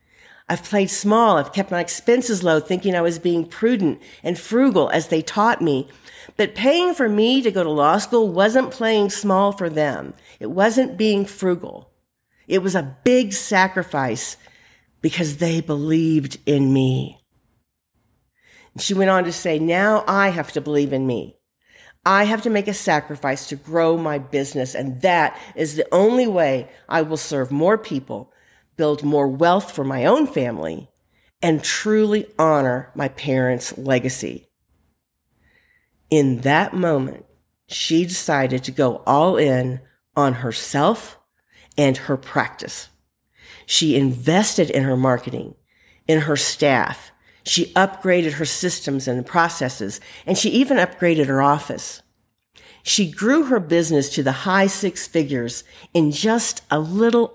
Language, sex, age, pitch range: English, female, 50-69, 140-200 Hz